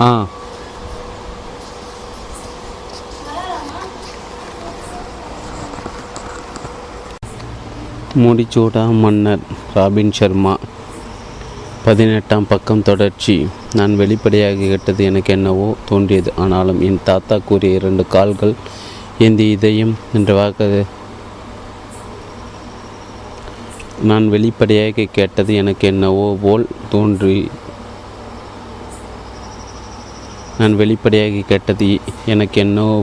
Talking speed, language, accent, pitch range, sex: 65 wpm, Tamil, native, 100-110 Hz, male